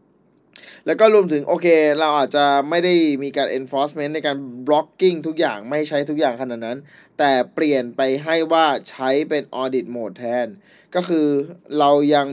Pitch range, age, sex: 125-155 Hz, 20-39, male